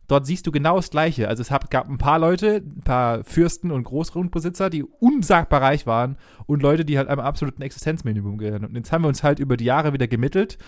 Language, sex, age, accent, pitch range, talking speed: German, male, 30-49, German, 120-150 Hz, 225 wpm